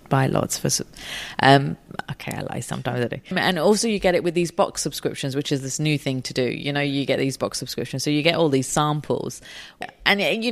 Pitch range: 135-170 Hz